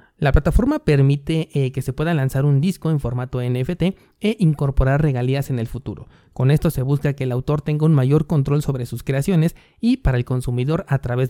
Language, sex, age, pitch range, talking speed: Spanish, male, 30-49, 130-160 Hz, 205 wpm